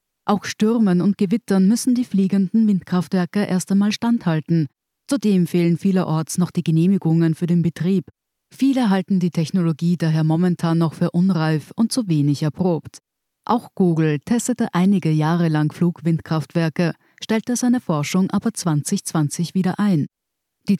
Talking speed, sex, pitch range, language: 140 wpm, female, 160-200 Hz, German